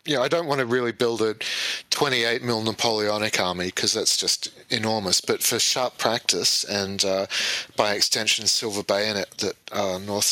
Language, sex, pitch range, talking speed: English, male, 105-125 Hz, 170 wpm